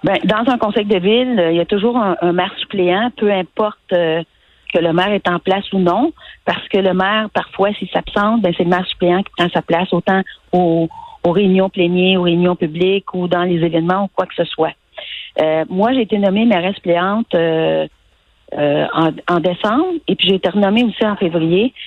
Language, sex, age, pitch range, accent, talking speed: French, female, 40-59, 170-210 Hz, Canadian, 215 wpm